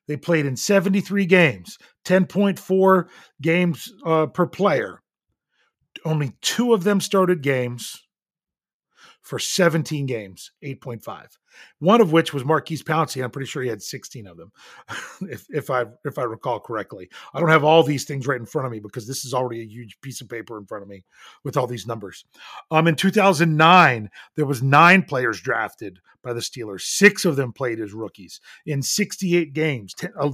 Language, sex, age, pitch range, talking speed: English, male, 40-59, 135-190 Hz, 180 wpm